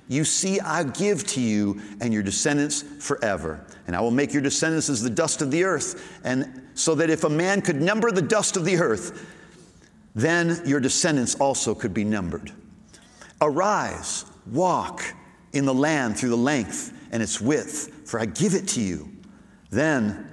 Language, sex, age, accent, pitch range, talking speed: English, male, 50-69, American, 110-165 Hz, 175 wpm